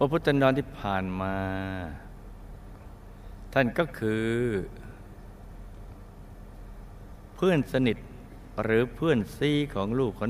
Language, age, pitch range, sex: Thai, 60-79, 100-120 Hz, male